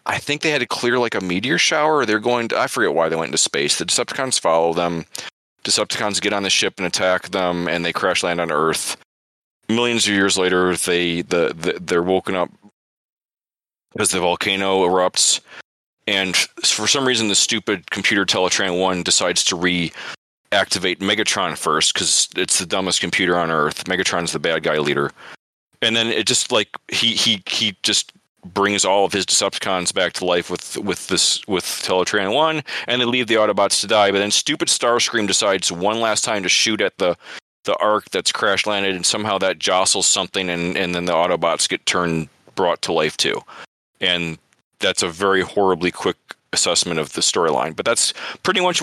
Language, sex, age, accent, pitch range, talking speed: English, male, 30-49, American, 90-110 Hz, 195 wpm